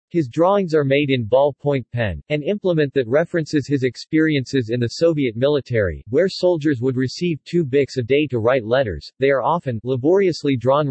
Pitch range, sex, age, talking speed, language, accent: 125-155 Hz, male, 40-59, 180 wpm, English, American